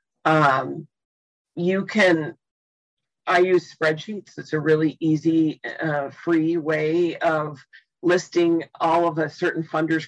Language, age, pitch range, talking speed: English, 40-59, 155-180 Hz, 120 wpm